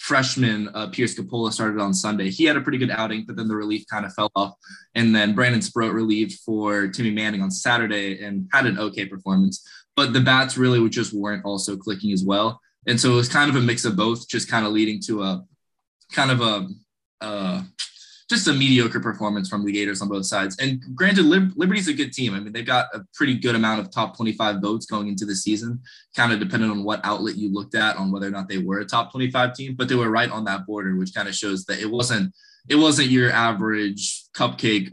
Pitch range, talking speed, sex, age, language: 100-125 Hz, 235 wpm, male, 20-39, English